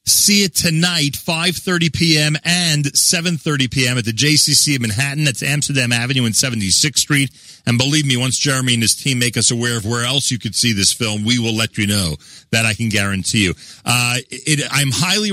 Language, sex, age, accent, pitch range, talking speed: English, male, 40-59, American, 115-150 Hz, 205 wpm